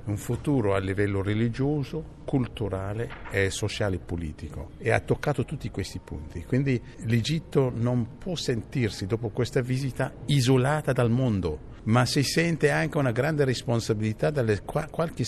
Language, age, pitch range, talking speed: Italian, 60-79, 95-130 Hz, 145 wpm